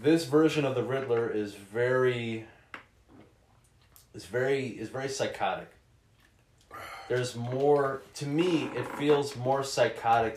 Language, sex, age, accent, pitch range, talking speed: English, male, 30-49, American, 110-130 Hz, 115 wpm